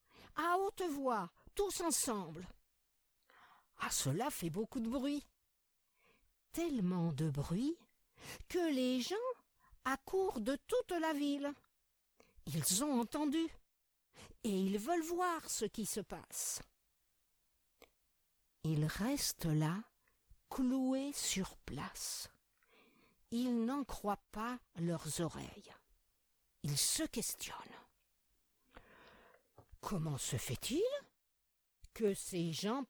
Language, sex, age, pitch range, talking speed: French, female, 50-69, 195-320 Hz, 100 wpm